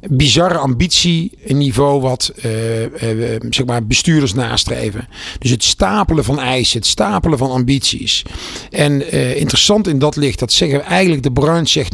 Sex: male